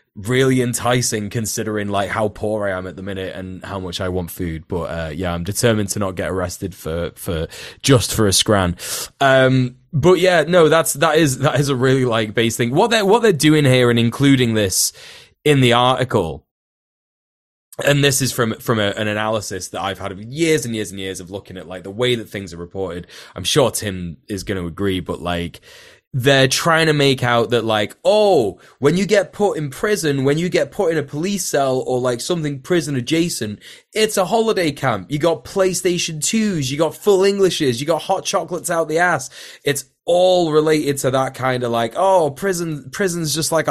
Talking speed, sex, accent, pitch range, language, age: 210 wpm, male, British, 105-160 Hz, English, 20-39